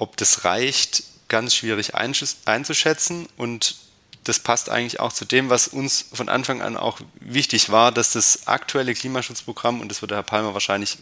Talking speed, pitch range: 170 wpm, 105-125 Hz